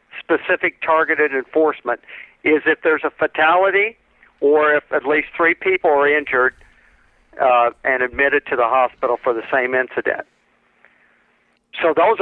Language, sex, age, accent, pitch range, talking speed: English, male, 50-69, American, 130-160 Hz, 140 wpm